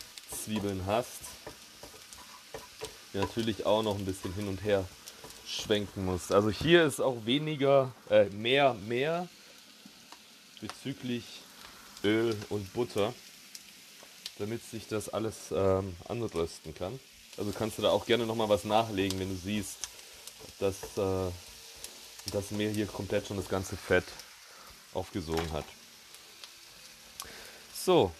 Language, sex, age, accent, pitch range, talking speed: German, male, 30-49, German, 95-120 Hz, 120 wpm